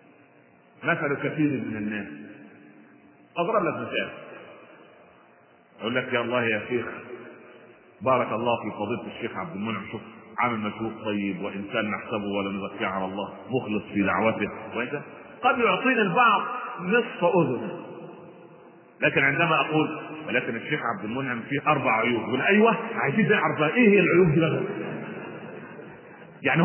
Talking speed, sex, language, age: 130 wpm, male, Arabic, 40-59